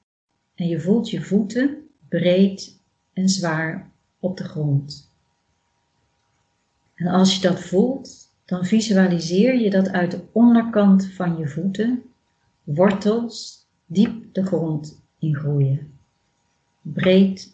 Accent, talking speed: Dutch, 110 wpm